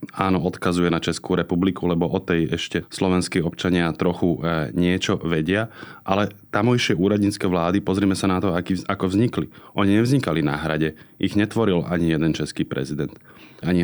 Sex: male